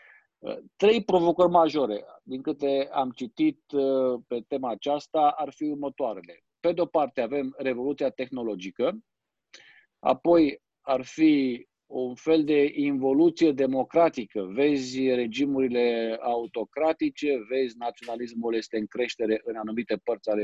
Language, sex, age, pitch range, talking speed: Romanian, male, 50-69, 125-170 Hz, 115 wpm